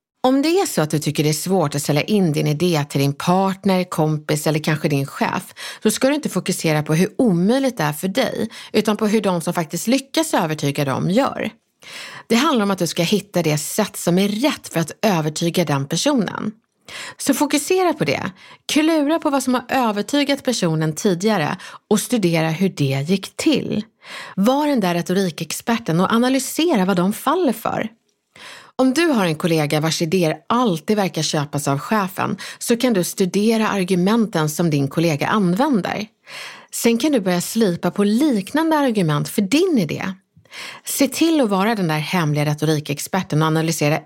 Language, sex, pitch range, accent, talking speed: Swedish, female, 165-245 Hz, native, 180 wpm